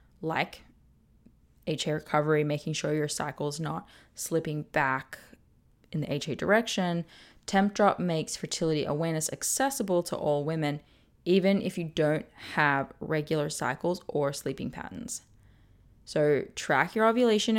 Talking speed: 130 wpm